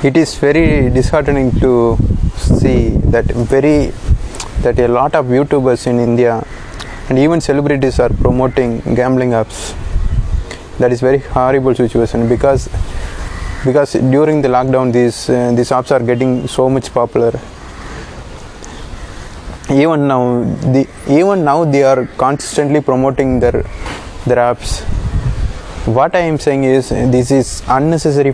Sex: male